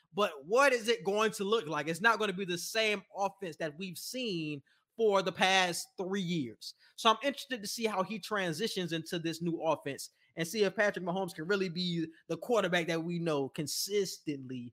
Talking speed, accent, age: 205 wpm, American, 20-39